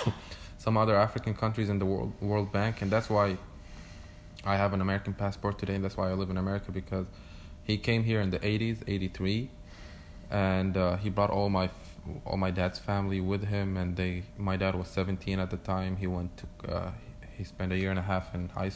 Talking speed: 215 wpm